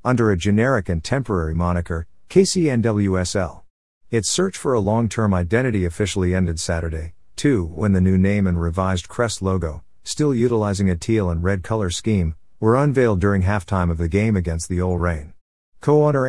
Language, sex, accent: English, male, American